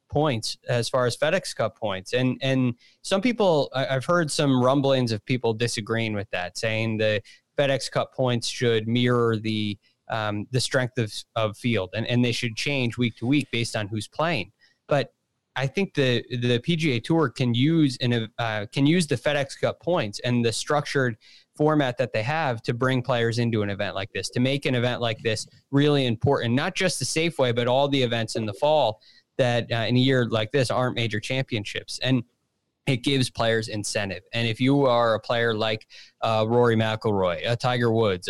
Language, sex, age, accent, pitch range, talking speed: English, male, 20-39, American, 115-135 Hz, 200 wpm